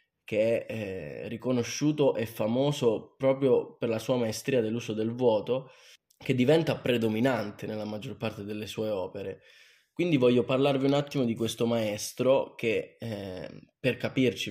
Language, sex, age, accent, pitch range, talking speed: Italian, male, 20-39, native, 110-135 Hz, 145 wpm